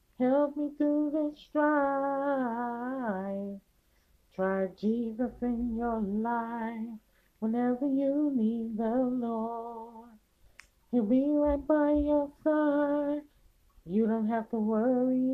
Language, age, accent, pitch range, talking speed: English, 30-49, American, 225-280 Hz, 100 wpm